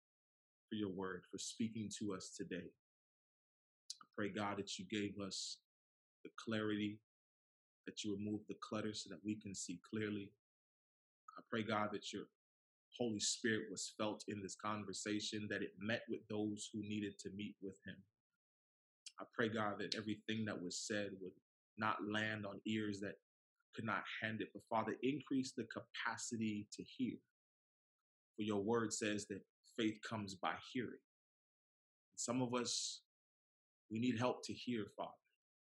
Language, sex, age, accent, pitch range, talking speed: English, male, 20-39, American, 100-115 Hz, 160 wpm